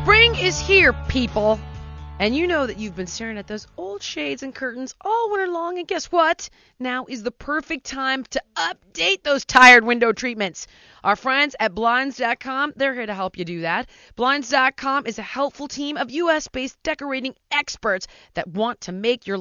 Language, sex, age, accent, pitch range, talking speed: English, female, 30-49, American, 180-270 Hz, 180 wpm